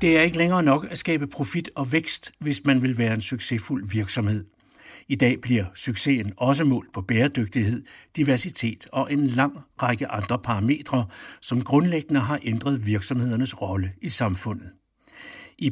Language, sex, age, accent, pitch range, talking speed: Danish, male, 60-79, native, 105-140 Hz, 155 wpm